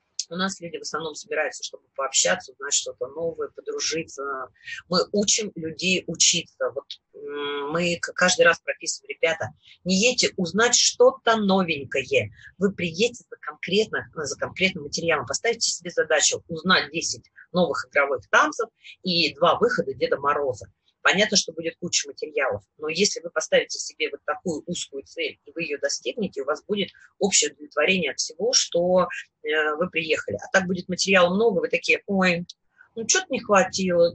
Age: 30-49